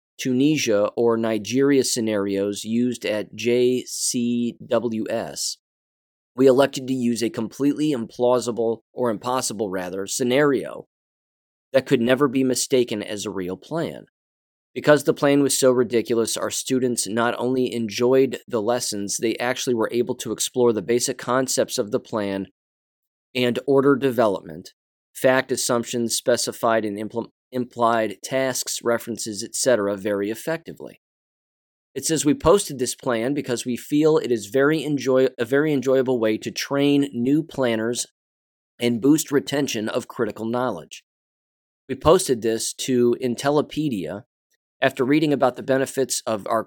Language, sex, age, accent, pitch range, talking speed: English, male, 20-39, American, 110-135 Hz, 135 wpm